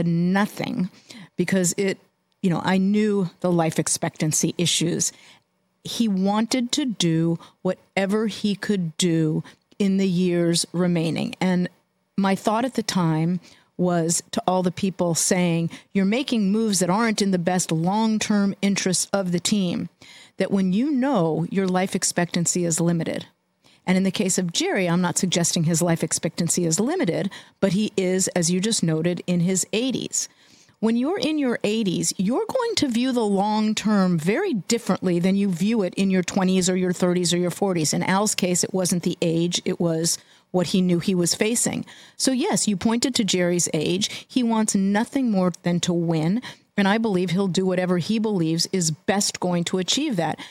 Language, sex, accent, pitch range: English, female, American, 175-210 Hz